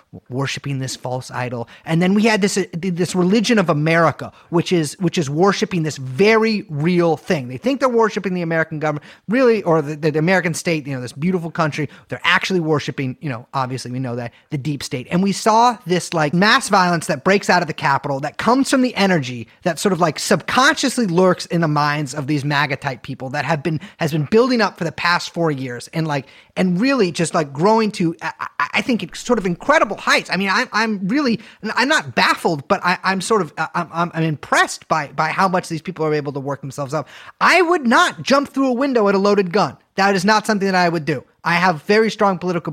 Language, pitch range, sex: English, 155-220 Hz, male